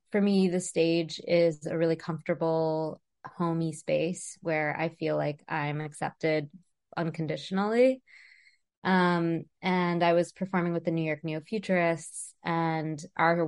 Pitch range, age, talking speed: 165-190 Hz, 20-39, 130 wpm